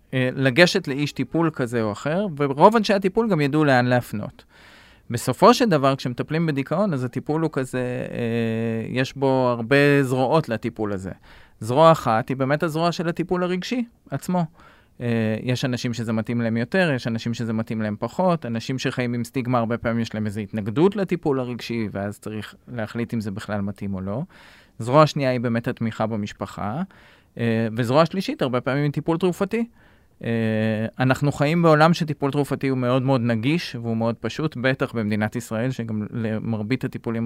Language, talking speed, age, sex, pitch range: Hebrew, 155 wpm, 20-39, male, 115-145 Hz